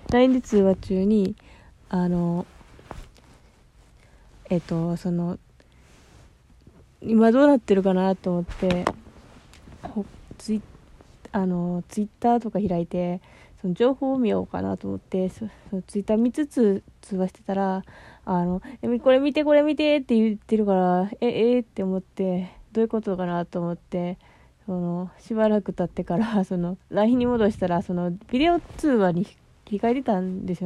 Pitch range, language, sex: 185-230 Hz, Japanese, female